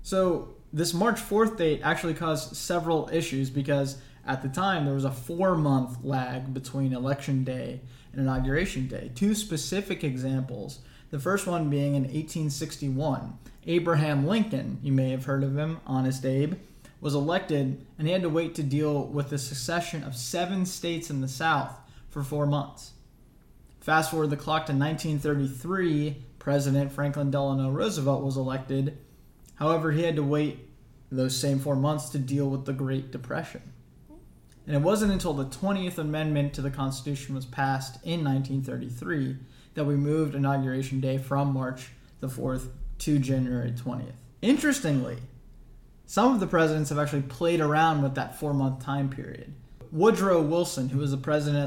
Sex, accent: male, American